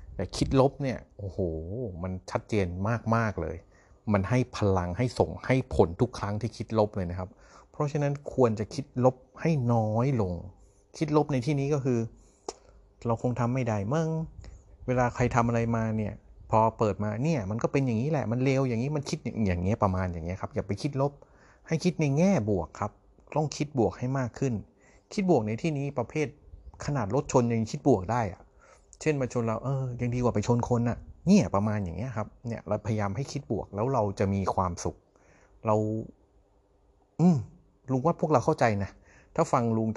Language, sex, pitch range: Thai, male, 100-125 Hz